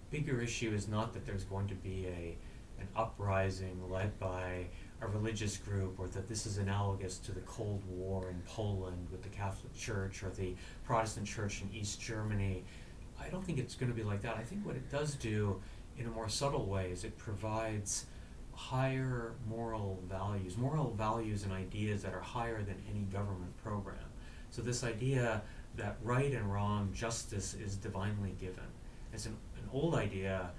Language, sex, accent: English, male, American